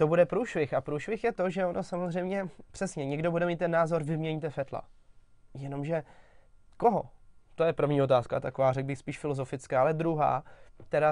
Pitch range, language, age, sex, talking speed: 135-160 Hz, Czech, 20-39, male, 175 wpm